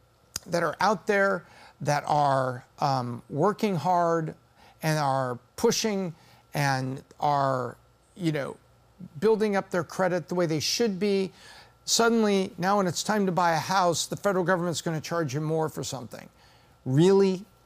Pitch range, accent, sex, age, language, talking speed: 150-195 Hz, American, male, 50-69, English, 155 wpm